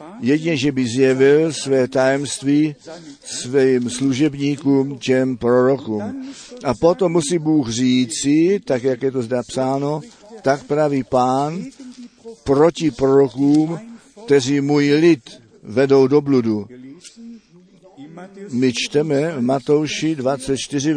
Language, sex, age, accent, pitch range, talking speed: Czech, male, 50-69, native, 130-170 Hz, 110 wpm